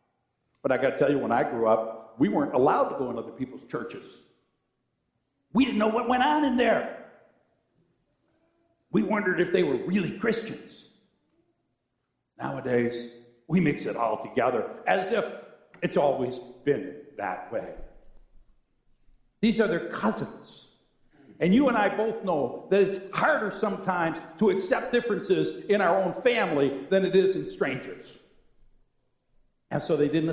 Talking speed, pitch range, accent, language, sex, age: 150 wpm, 145-215 Hz, American, English, male, 50-69